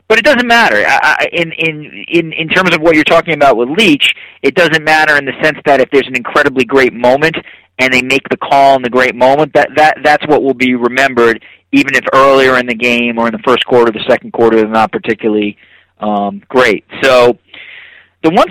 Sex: male